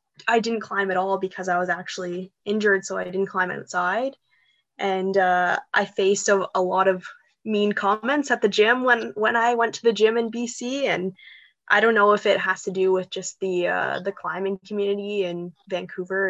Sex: female